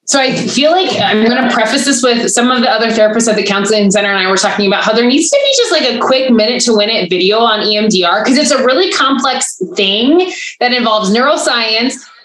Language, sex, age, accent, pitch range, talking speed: English, female, 20-39, American, 205-270 Hz, 240 wpm